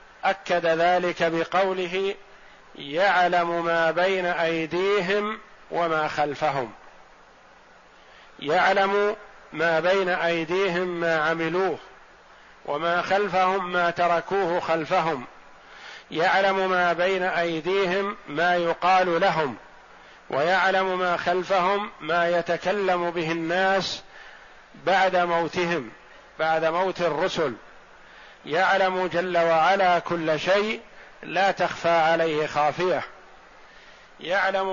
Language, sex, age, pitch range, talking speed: Arabic, male, 50-69, 165-190 Hz, 85 wpm